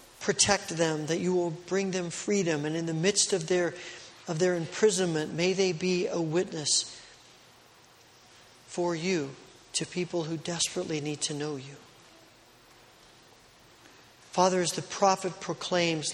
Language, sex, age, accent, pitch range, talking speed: English, male, 40-59, American, 160-185 Hz, 135 wpm